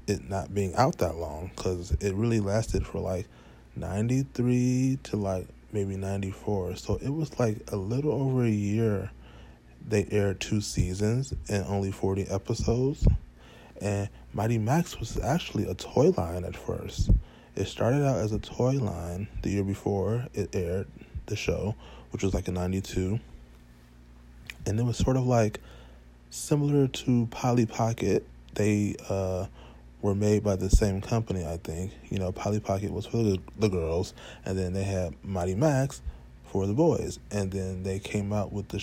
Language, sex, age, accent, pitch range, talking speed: English, male, 20-39, American, 90-110 Hz, 165 wpm